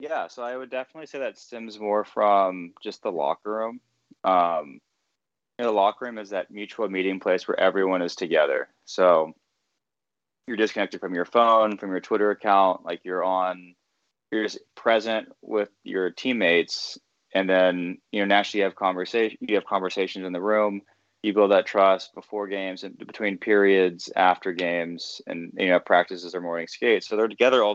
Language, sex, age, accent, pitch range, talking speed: English, male, 20-39, American, 90-110 Hz, 175 wpm